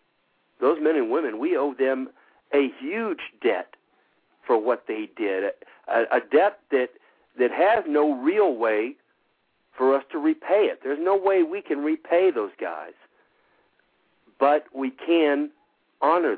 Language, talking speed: English, 145 wpm